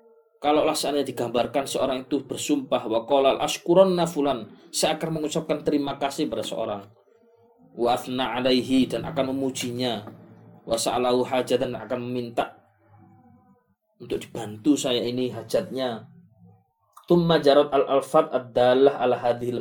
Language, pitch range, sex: Malay, 125-175 Hz, male